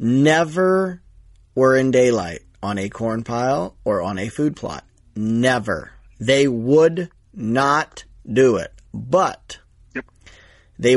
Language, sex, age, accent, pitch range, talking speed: English, male, 30-49, American, 110-130 Hz, 115 wpm